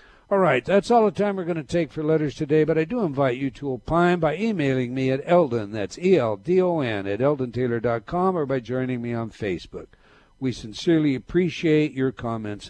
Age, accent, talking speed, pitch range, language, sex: 60-79, American, 190 wpm, 130-180 Hz, English, male